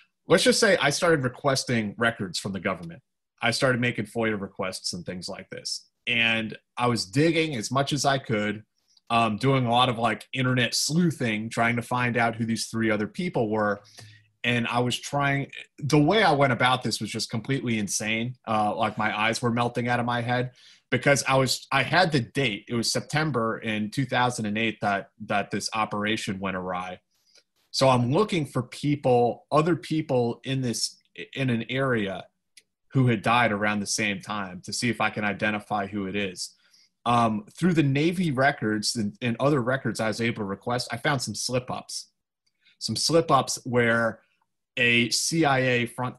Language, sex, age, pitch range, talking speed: English, male, 30-49, 110-130 Hz, 185 wpm